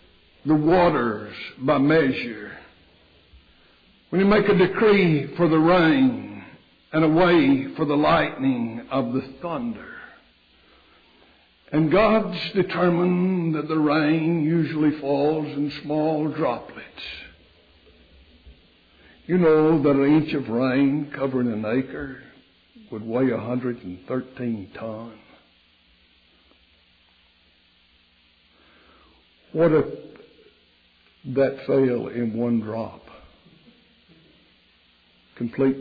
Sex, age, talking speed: male, 60-79, 95 wpm